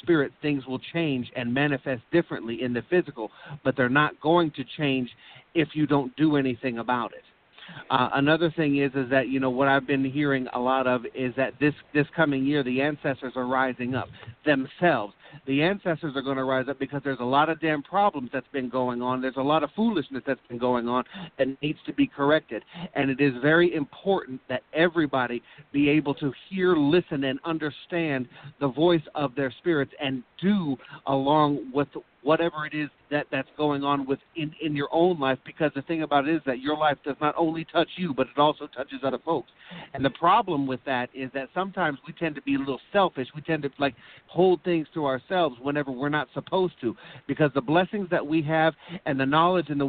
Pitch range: 130-160 Hz